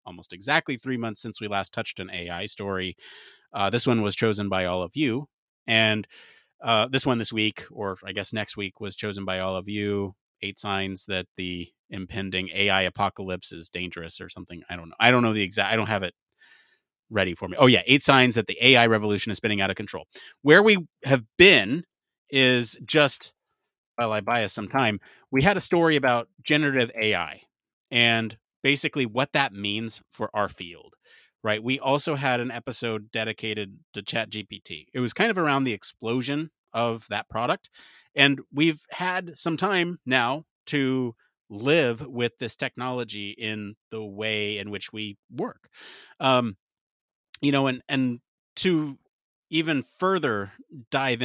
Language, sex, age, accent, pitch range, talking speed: English, male, 30-49, American, 100-135 Hz, 175 wpm